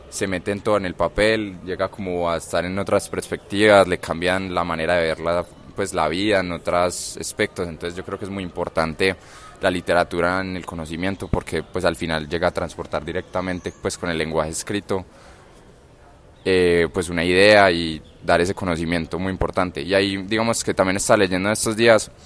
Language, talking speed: Spanish, 190 wpm